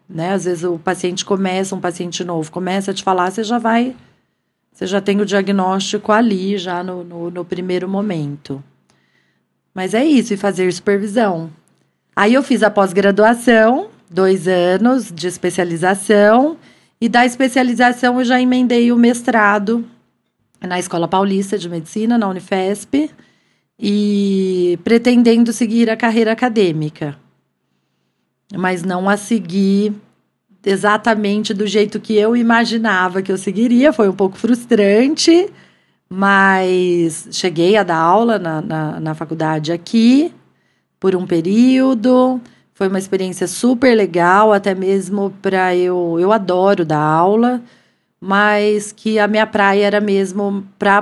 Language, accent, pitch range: Portuguese, Brazilian, 180-220 Hz